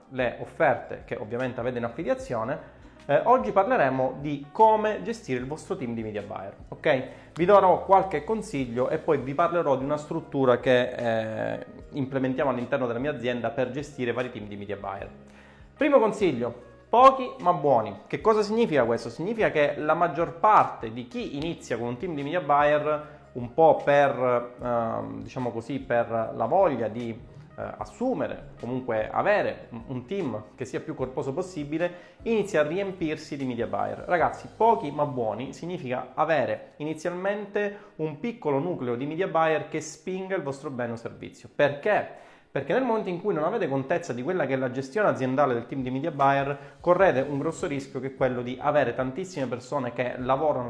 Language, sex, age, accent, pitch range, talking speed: Italian, male, 30-49, native, 125-165 Hz, 175 wpm